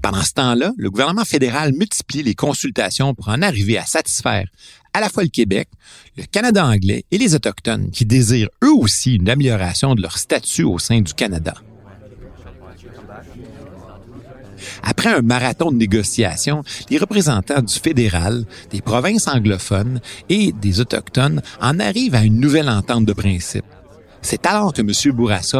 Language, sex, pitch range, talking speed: French, male, 100-130 Hz, 155 wpm